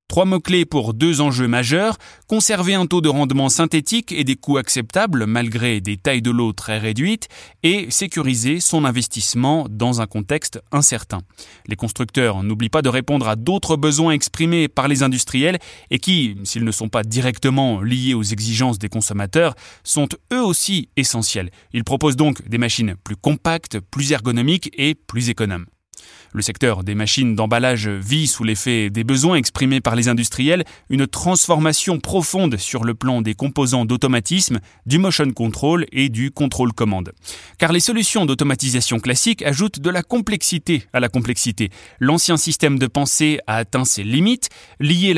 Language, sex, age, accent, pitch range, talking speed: French, male, 20-39, French, 115-155 Hz, 165 wpm